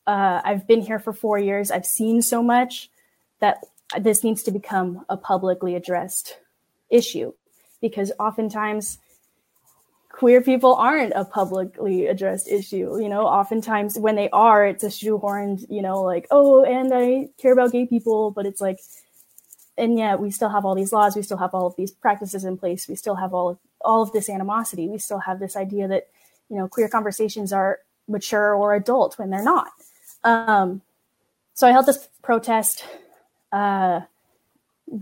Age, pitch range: 10-29, 190-225 Hz